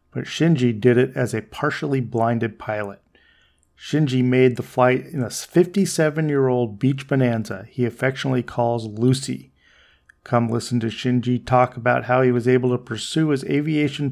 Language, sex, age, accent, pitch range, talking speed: English, male, 40-59, American, 115-135 Hz, 155 wpm